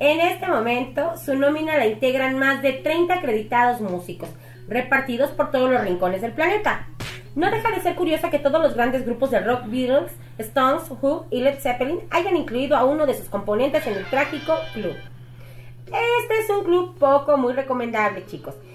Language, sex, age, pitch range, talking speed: Spanish, female, 30-49, 240-315 Hz, 180 wpm